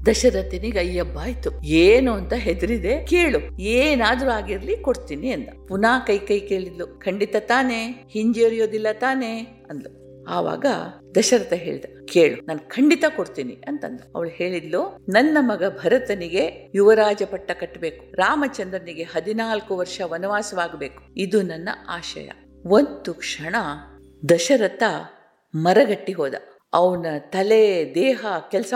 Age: 50-69